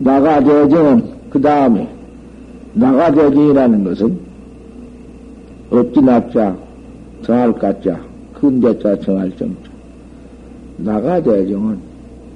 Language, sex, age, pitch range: Korean, male, 60-79, 145-240 Hz